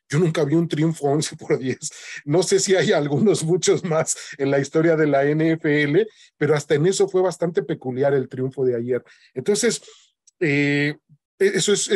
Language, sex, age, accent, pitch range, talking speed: English, male, 40-59, Mexican, 140-170 Hz, 170 wpm